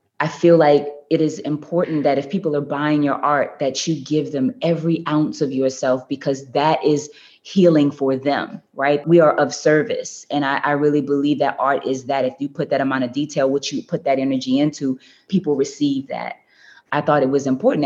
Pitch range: 140-160 Hz